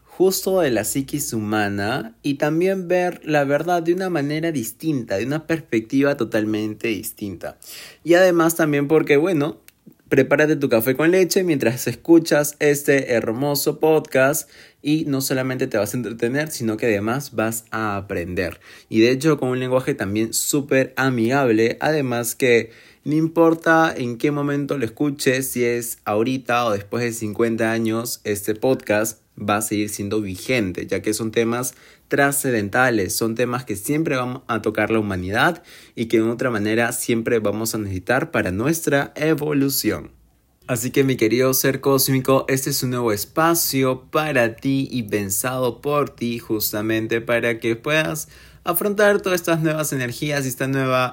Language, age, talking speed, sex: Spanish, 20-39, 160 wpm, male